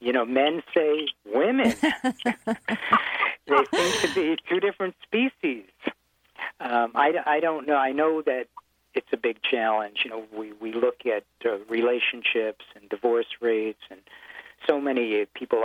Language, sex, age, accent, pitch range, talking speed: English, male, 50-69, American, 120-155 Hz, 150 wpm